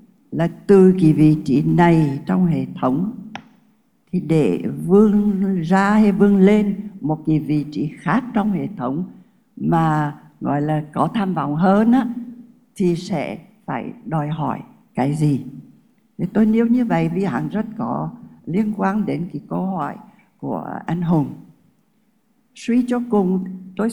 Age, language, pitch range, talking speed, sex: 60-79, Vietnamese, 160-215 Hz, 145 wpm, female